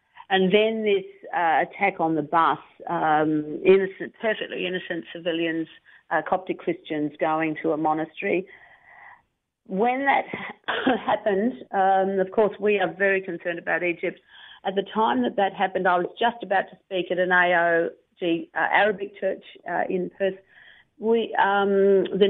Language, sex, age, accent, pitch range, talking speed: English, female, 50-69, Australian, 180-210 Hz, 160 wpm